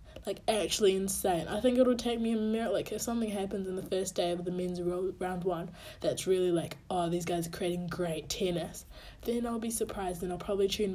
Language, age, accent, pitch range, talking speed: English, 20-39, Australian, 180-235 Hz, 225 wpm